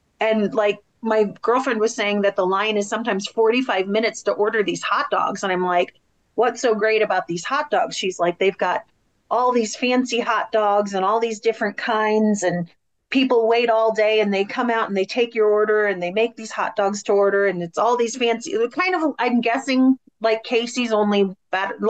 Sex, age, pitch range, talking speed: female, 30-49, 205-245 Hz, 210 wpm